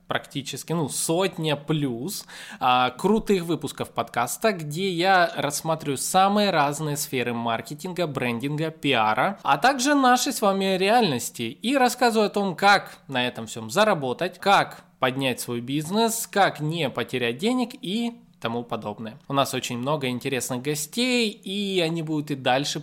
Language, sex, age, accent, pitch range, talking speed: Russian, male, 20-39, native, 130-195 Hz, 140 wpm